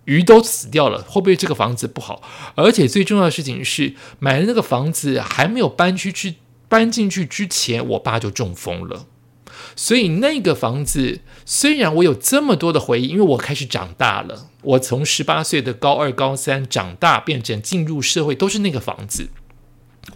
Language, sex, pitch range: Chinese, male, 125-185 Hz